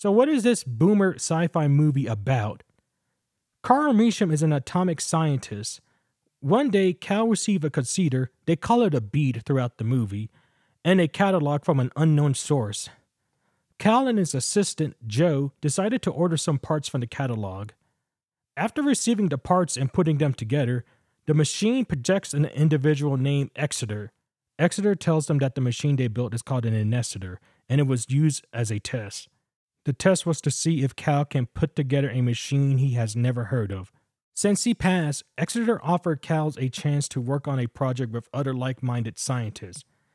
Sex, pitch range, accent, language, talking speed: male, 130-185 Hz, American, English, 175 wpm